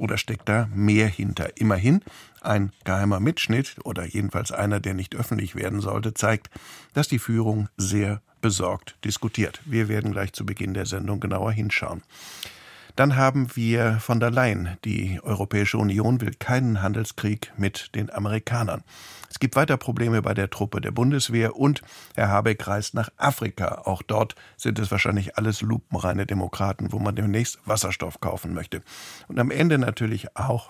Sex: male